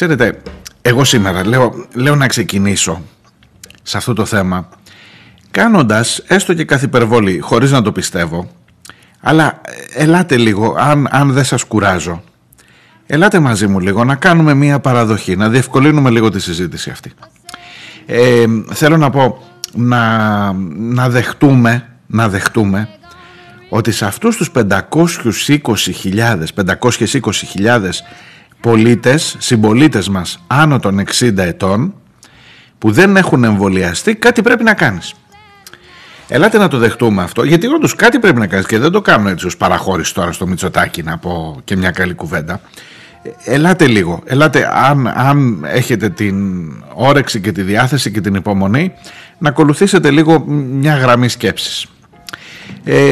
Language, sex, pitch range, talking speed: Greek, male, 100-145 Hz, 135 wpm